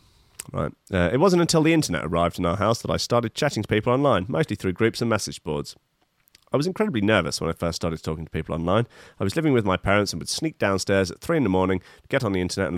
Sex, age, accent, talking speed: male, 30-49, British, 270 wpm